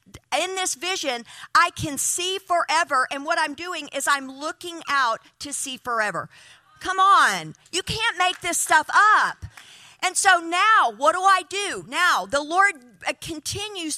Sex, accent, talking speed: female, American, 160 wpm